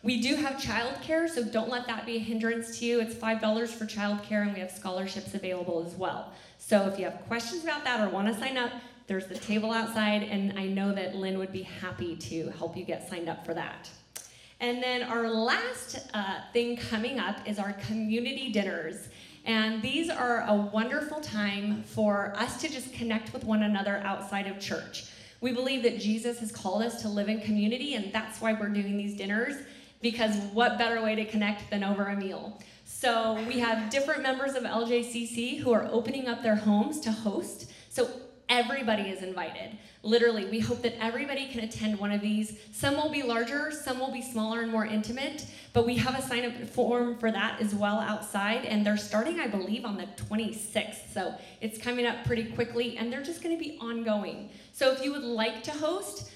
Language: English